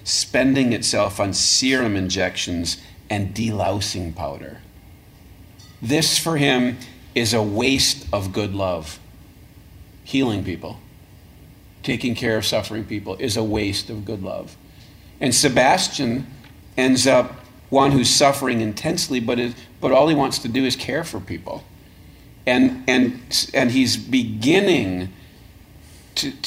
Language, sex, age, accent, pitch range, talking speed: English, male, 40-59, American, 100-125 Hz, 125 wpm